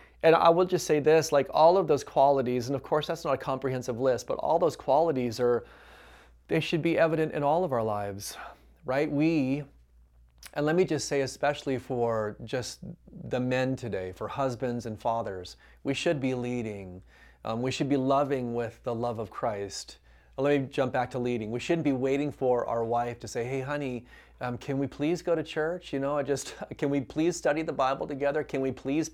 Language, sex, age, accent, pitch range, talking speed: English, male, 30-49, American, 120-150 Hz, 210 wpm